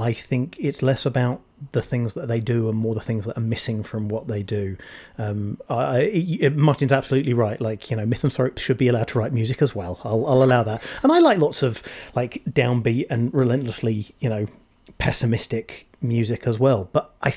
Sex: male